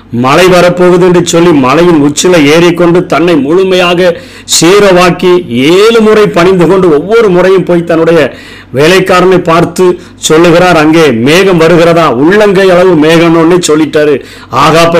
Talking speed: 95 wpm